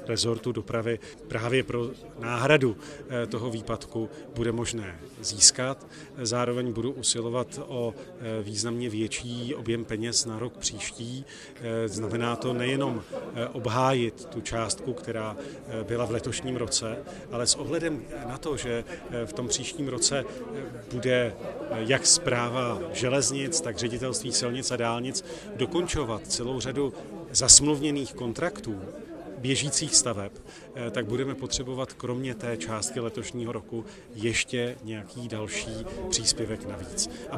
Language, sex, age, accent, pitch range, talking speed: Czech, male, 40-59, native, 115-130 Hz, 115 wpm